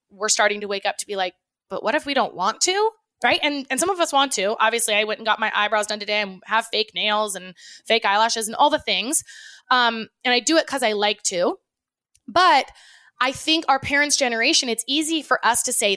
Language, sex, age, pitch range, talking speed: English, female, 20-39, 210-285 Hz, 240 wpm